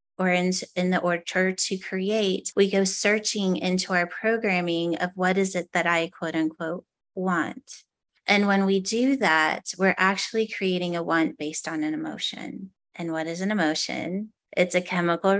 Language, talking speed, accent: English, 170 wpm, American